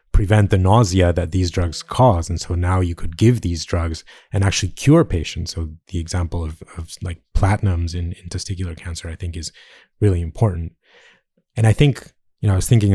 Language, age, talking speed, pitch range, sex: English, 30-49, 200 wpm, 85-105 Hz, male